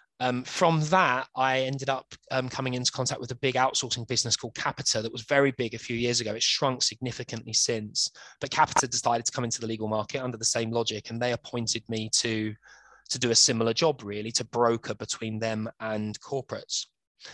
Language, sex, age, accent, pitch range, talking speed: English, male, 20-39, British, 115-130 Hz, 205 wpm